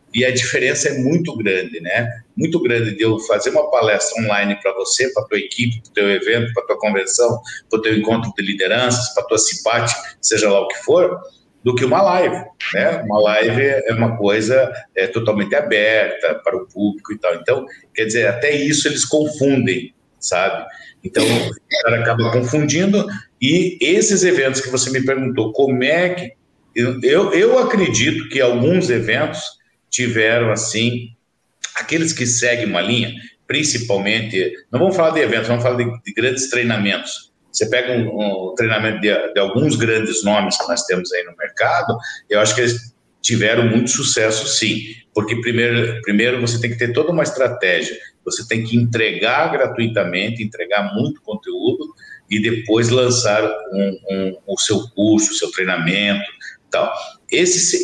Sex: male